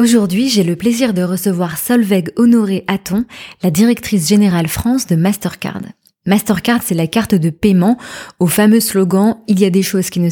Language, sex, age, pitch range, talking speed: French, female, 20-39, 180-220 Hz, 180 wpm